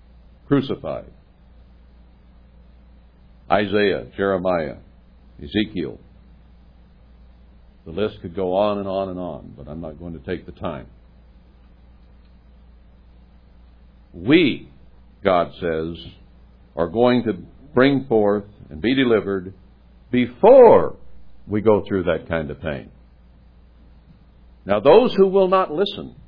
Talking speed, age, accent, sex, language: 105 wpm, 60-79, American, male, English